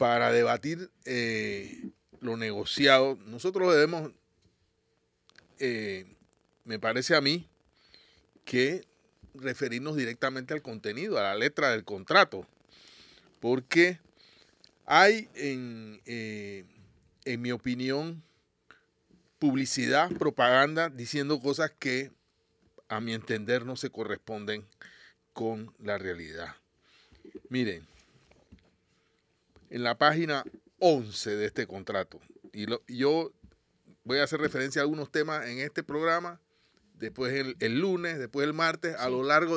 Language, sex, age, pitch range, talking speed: Spanish, male, 40-59, 115-155 Hz, 110 wpm